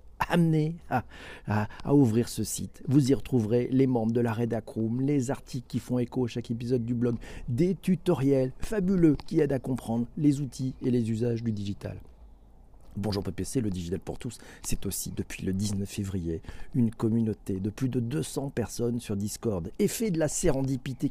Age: 50-69